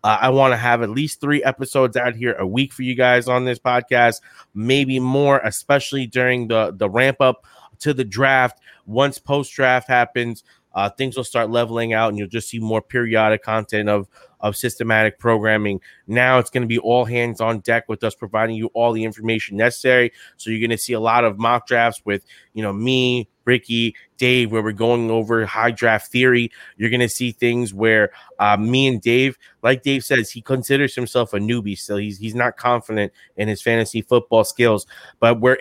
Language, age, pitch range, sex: English, 20-39, 110-125 Hz, male